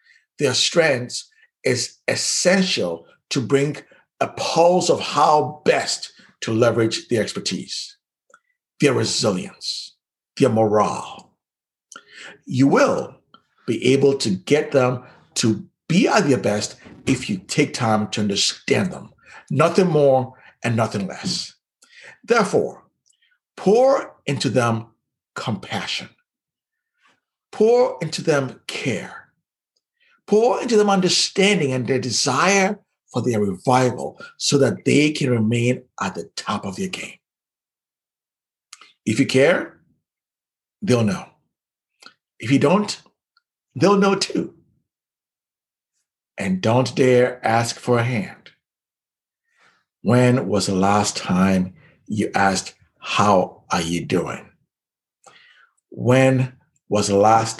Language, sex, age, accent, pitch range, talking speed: English, male, 60-79, American, 115-195 Hz, 110 wpm